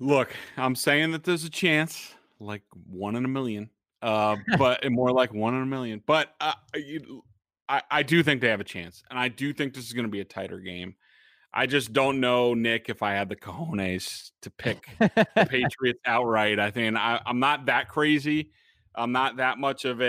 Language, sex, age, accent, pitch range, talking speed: English, male, 30-49, American, 105-130 Hz, 210 wpm